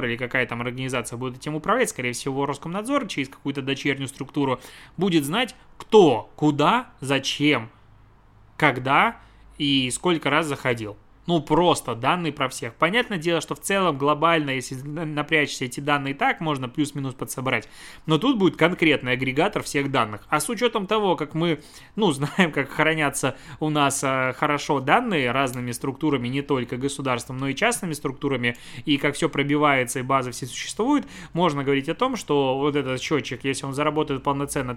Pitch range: 130-160 Hz